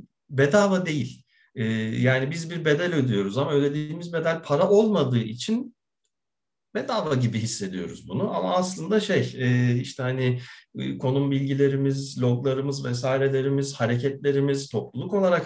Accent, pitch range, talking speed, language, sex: native, 130-165 Hz, 125 wpm, Turkish, male